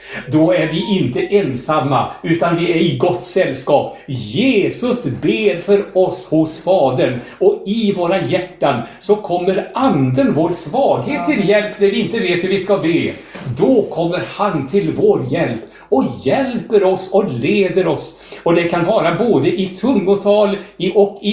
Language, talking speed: Swedish, 160 wpm